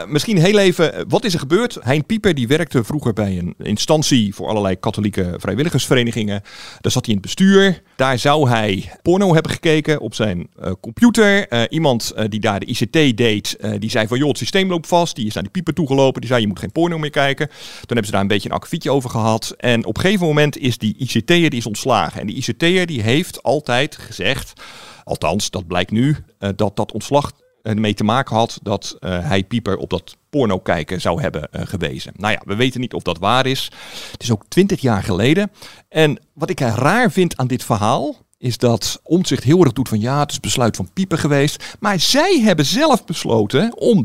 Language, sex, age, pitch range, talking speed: Dutch, male, 50-69, 110-160 Hz, 220 wpm